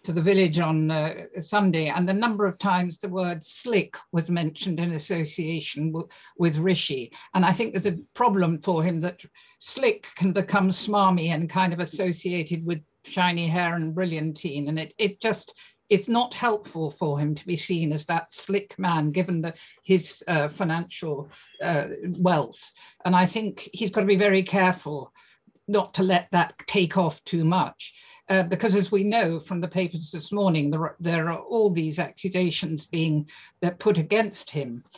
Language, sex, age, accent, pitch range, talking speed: English, female, 50-69, British, 165-200 Hz, 180 wpm